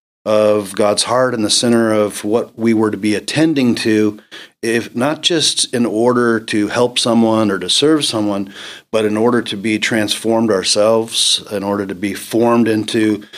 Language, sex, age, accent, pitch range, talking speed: English, male, 40-59, American, 105-120 Hz, 175 wpm